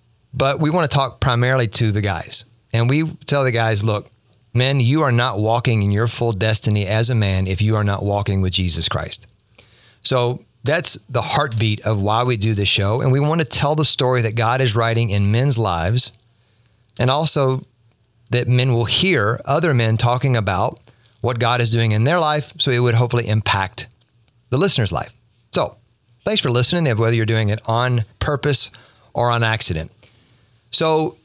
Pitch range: 110-130 Hz